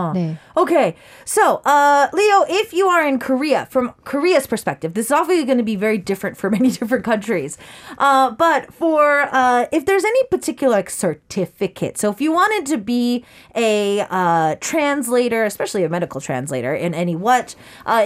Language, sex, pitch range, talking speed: English, female, 185-270 Hz, 170 wpm